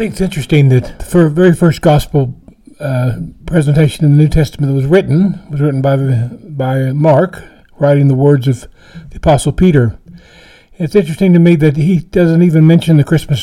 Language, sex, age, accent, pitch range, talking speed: English, male, 60-79, American, 145-175 Hz, 190 wpm